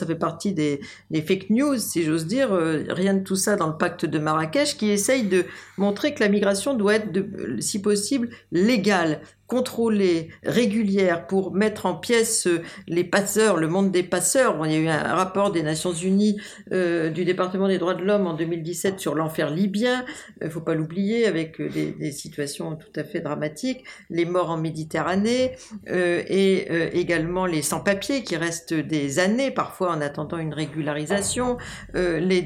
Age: 50-69